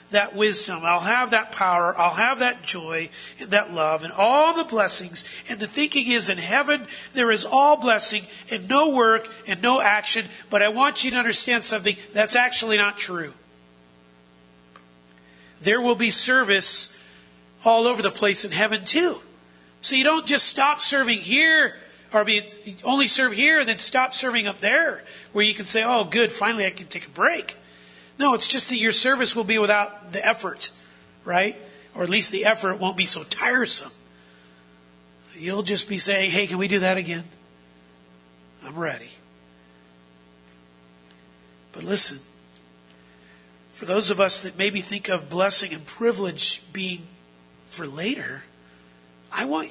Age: 40-59